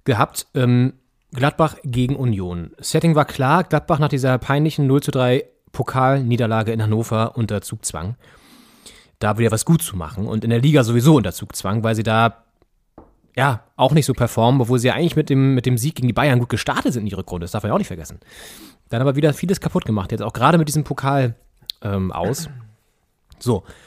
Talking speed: 195 wpm